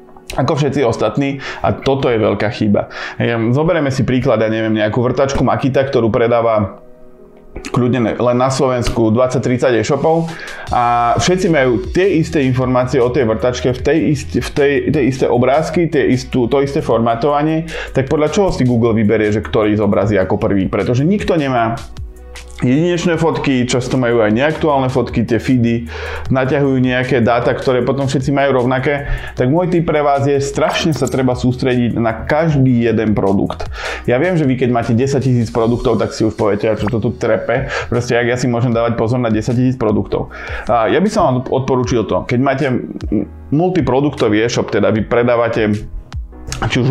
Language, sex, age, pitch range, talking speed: Slovak, male, 20-39, 110-135 Hz, 175 wpm